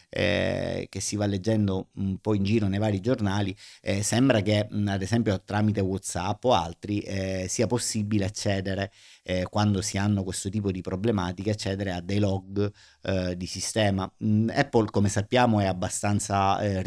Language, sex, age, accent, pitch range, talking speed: Italian, male, 30-49, native, 95-105 Hz, 165 wpm